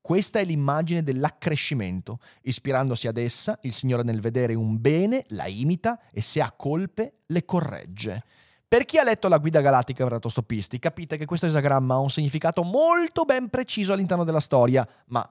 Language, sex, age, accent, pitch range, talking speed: Italian, male, 30-49, native, 120-190 Hz, 175 wpm